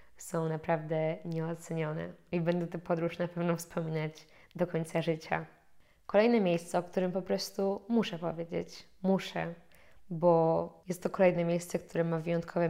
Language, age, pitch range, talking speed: Polish, 20-39, 165-180 Hz, 140 wpm